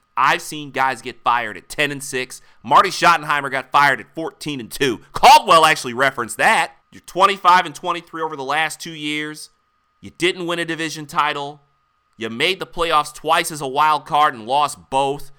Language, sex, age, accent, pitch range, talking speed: English, male, 30-49, American, 135-175 Hz, 185 wpm